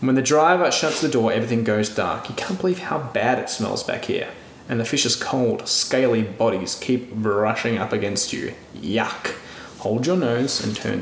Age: 20-39